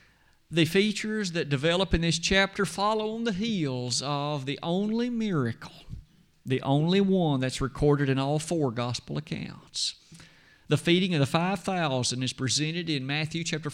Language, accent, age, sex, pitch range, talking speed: English, American, 50-69, male, 145-195 Hz, 155 wpm